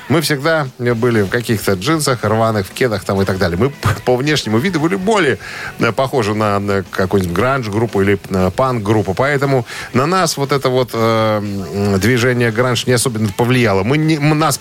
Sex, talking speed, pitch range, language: male, 165 wpm, 100-140 Hz, Russian